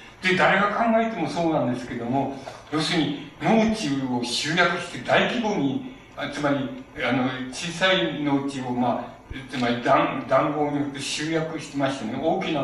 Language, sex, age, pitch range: Japanese, male, 60-79, 135-170 Hz